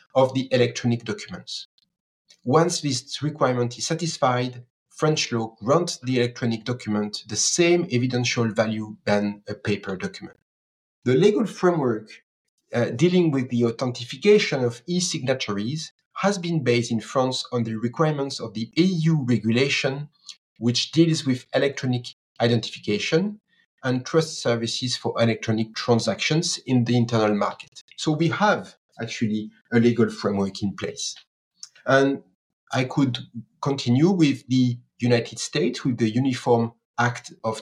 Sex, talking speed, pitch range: male, 130 wpm, 115-150 Hz